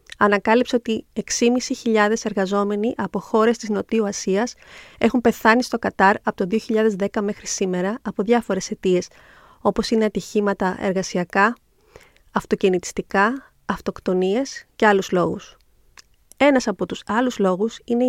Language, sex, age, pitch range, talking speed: Greek, female, 30-49, 200-235 Hz, 120 wpm